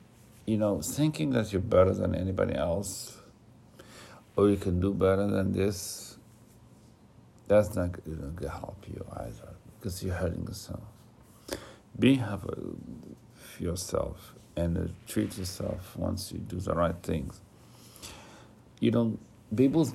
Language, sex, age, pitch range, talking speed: Arabic, male, 60-79, 95-110 Hz, 130 wpm